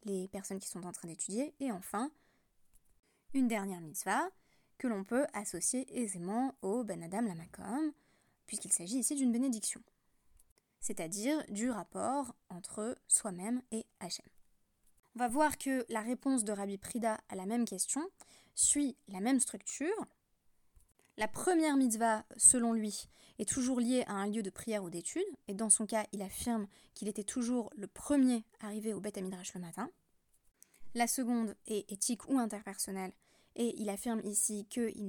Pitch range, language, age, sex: 200-250 Hz, French, 20-39, female